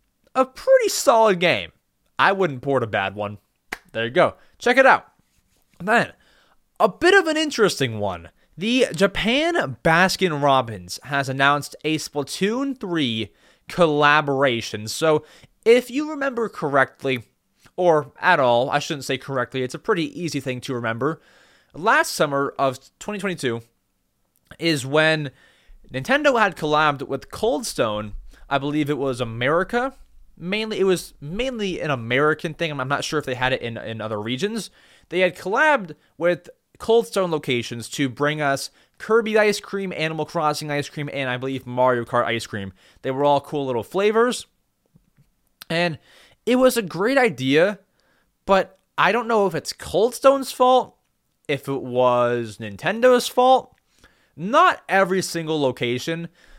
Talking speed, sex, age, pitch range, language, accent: 145 wpm, male, 20-39, 130-200 Hz, English, American